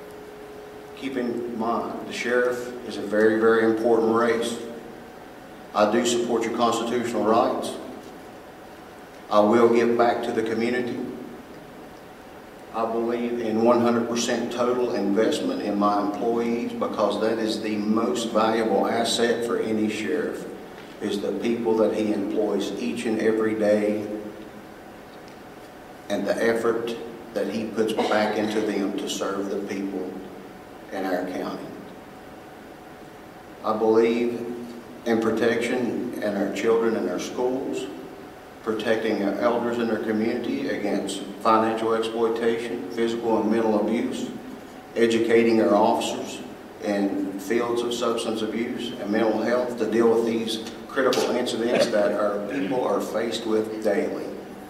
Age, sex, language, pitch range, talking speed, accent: 50-69, male, English, 105-115 Hz, 125 wpm, American